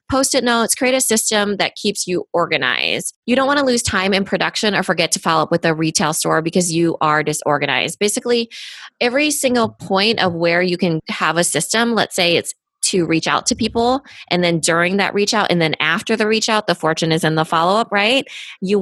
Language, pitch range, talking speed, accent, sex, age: English, 160-205 Hz, 220 wpm, American, female, 20-39